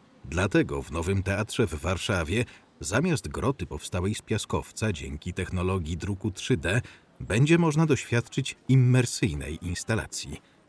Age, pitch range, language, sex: 40-59, 90-115 Hz, Polish, male